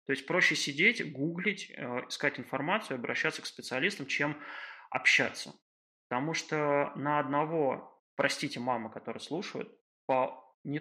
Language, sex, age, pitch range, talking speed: Russian, male, 20-39, 125-150 Hz, 120 wpm